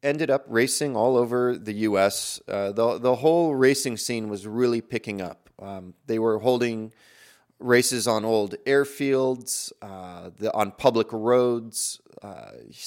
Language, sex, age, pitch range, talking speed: English, male, 30-49, 105-130 Hz, 145 wpm